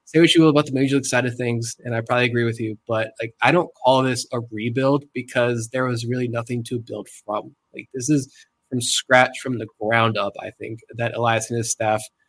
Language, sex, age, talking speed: English, male, 20-39, 240 wpm